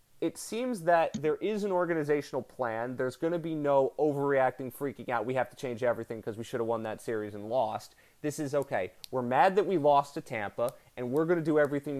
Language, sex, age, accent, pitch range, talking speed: English, male, 30-49, American, 115-150 Hz, 230 wpm